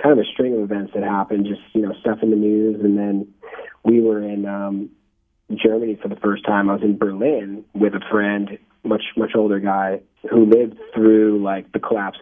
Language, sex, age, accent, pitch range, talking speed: English, male, 30-49, American, 105-115 Hz, 210 wpm